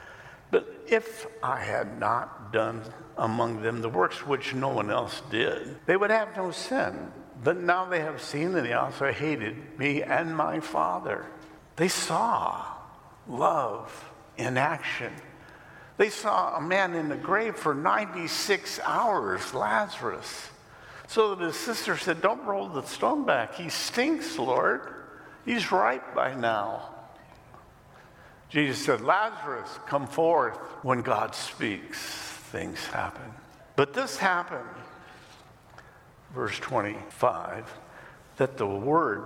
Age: 60-79